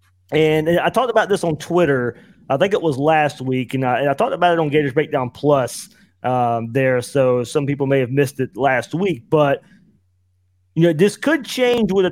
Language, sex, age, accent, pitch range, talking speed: English, male, 30-49, American, 120-165 Hz, 215 wpm